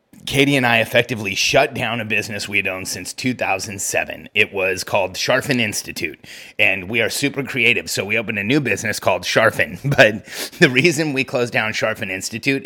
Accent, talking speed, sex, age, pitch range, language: American, 185 wpm, male, 30-49, 110-135 Hz, English